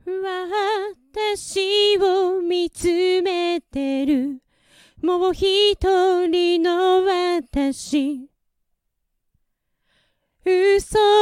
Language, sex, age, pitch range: Japanese, female, 40-59, 310-380 Hz